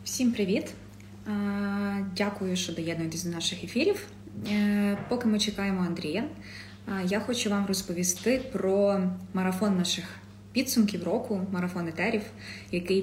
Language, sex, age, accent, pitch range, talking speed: Ukrainian, female, 20-39, native, 175-200 Hz, 110 wpm